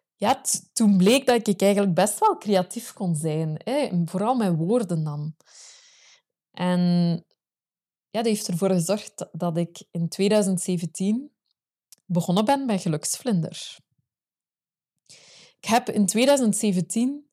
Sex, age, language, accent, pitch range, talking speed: female, 20-39, Dutch, Swiss, 175-220 Hz, 115 wpm